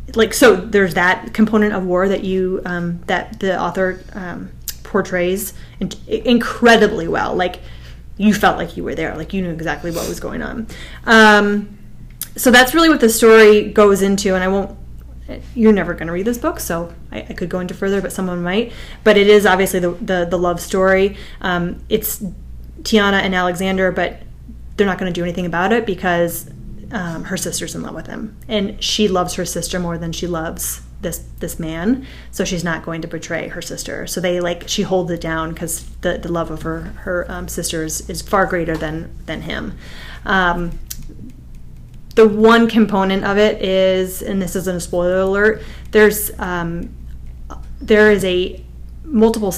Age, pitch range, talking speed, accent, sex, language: 20-39, 170-210 Hz, 190 wpm, American, female, English